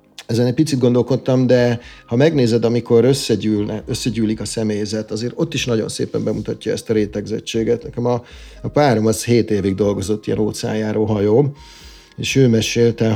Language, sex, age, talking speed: Hungarian, male, 50-69, 155 wpm